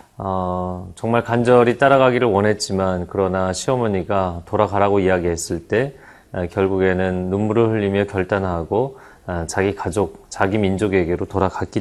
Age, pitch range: 30-49, 95-120 Hz